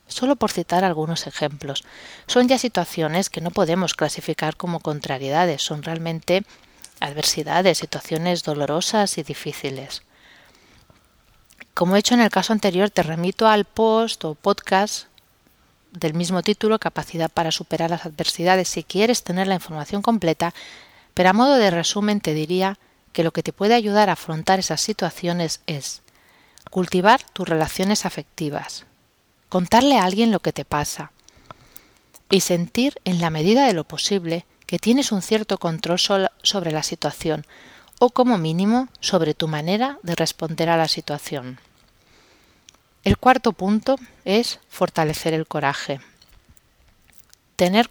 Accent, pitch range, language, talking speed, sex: Spanish, 160-205 Hz, Spanish, 140 wpm, female